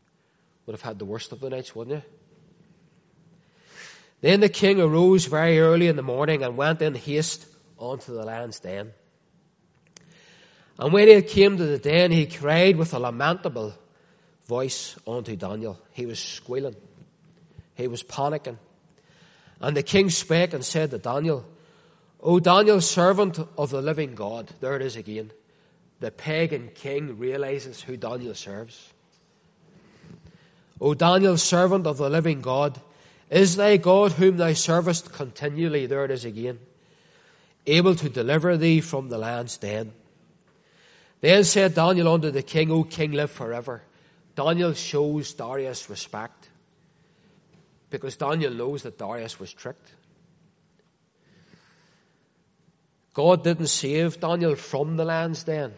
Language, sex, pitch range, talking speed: English, male, 135-170 Hz, 140 wpm